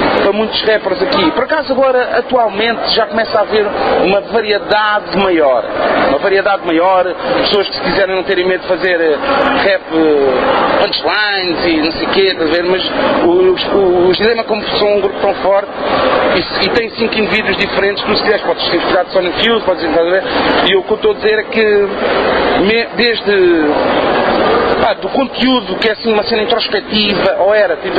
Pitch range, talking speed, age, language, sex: 175-225 Hz, 180 wpm, 40-59, Portuguese, male